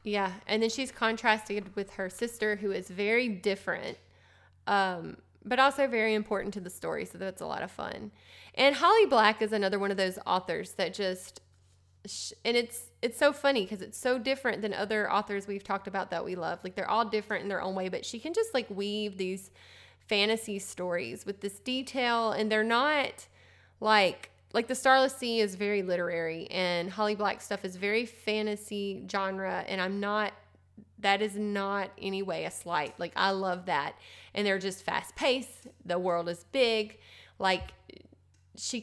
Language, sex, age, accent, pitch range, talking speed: English, female, 20-39, American, 190-230 Hz, 180 wpm